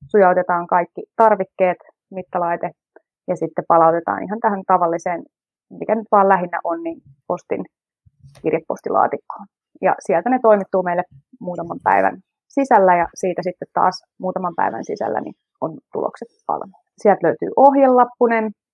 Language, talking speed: Finnish, 125 wpm